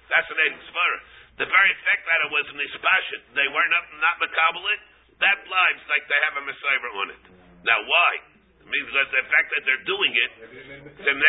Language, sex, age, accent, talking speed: English, male, 50-69, American, 190 wpm